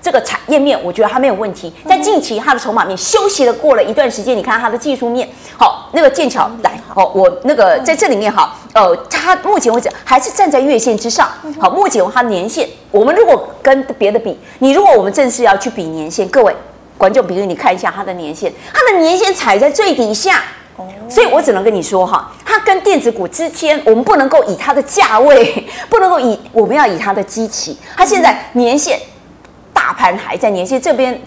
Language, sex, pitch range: Chinese, female, 205-315 Hz